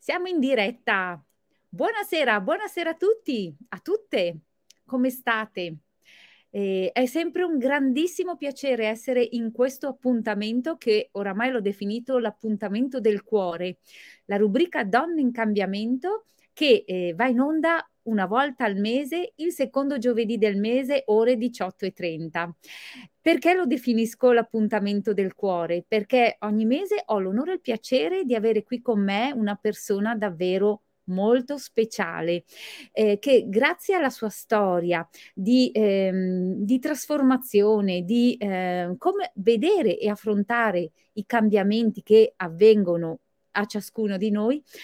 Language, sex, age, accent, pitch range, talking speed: Italian, female, 30-49, native, 205-260 Hz, 130 wpm